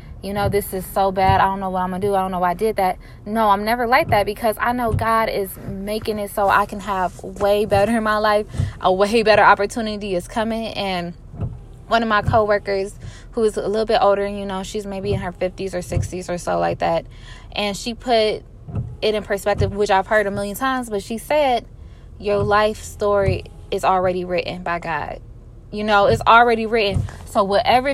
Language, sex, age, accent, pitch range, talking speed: English, female, 10-29, American, 185-225 Hz, 215 wpm